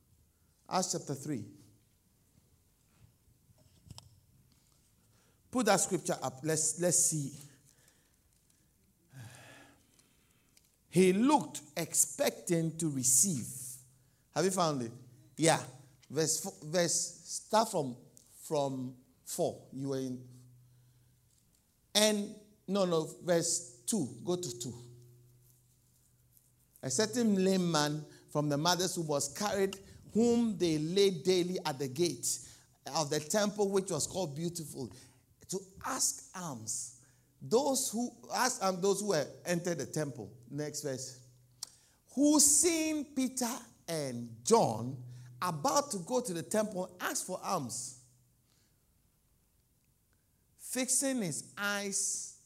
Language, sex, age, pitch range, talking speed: English, male, 50-69, 125-190 Hz, 110 wpm